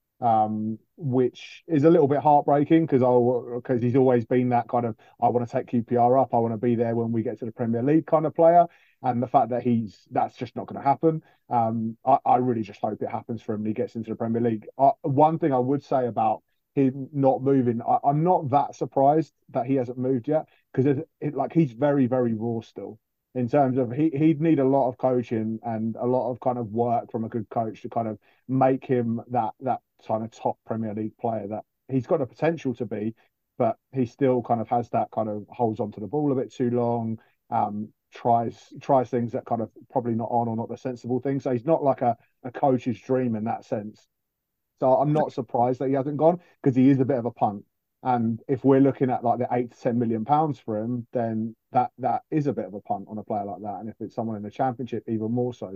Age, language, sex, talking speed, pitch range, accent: 30-49, English, male, 250 wpm, 115-135 Hz, British